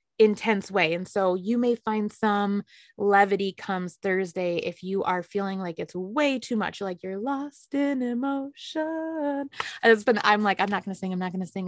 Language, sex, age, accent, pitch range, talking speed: English, female, 20-39, American, 200-245 Hz, 190 wpm